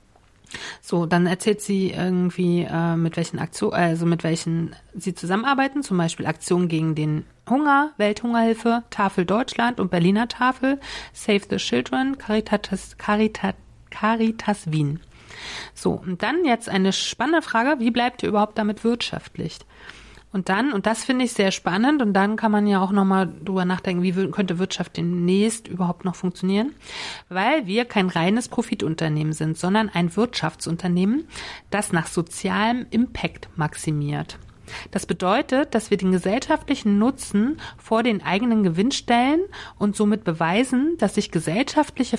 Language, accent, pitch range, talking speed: German, German, 175-230 Hz, 150 wpm